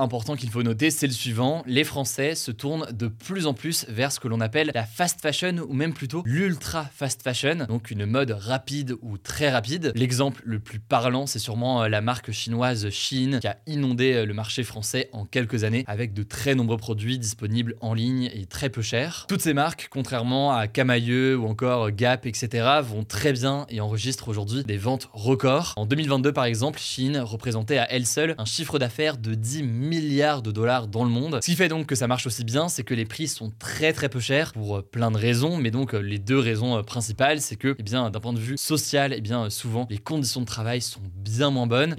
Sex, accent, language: male, French, French